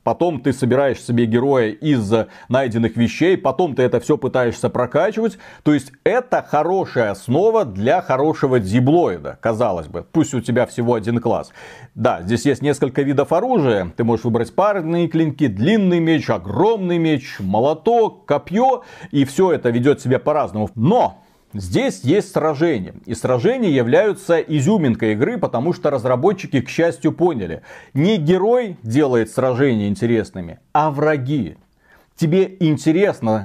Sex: male